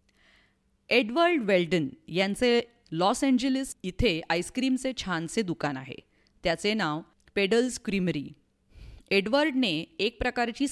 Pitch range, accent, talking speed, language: 160-235 Hz, Indian, 110 wpm, English